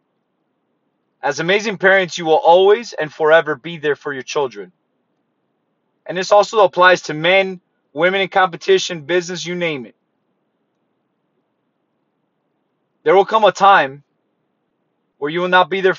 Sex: male